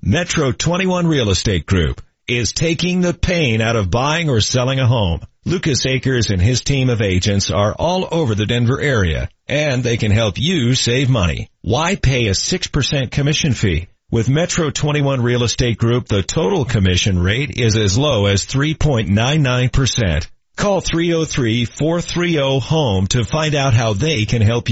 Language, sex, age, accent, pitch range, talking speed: English, male, 40-59, American, 105-150 Hz, 160 wpm